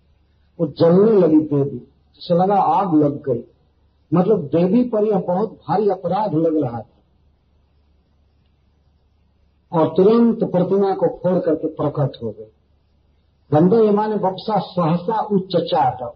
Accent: native